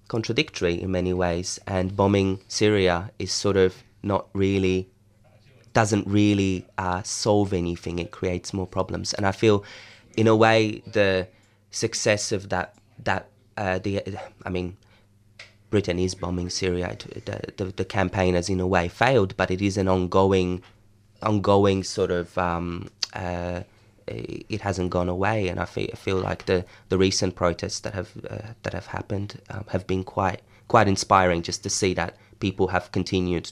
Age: 20-39